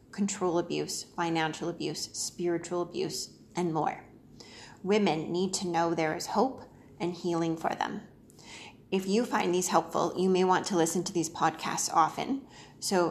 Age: 30-49